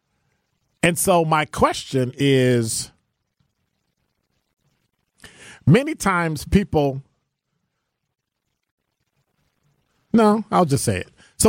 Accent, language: American, English